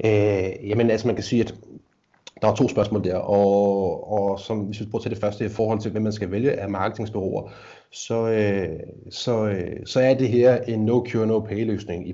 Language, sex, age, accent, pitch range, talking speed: Danish, male, 30-49, native, 100-120 Hz, 200 wpm